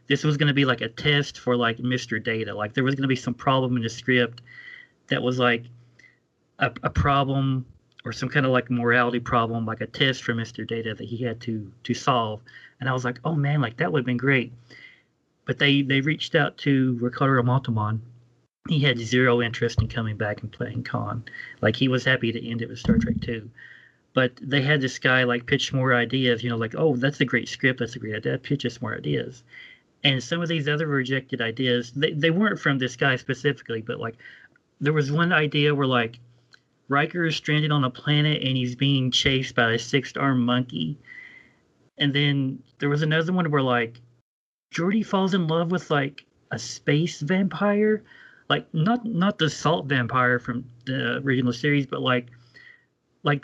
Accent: American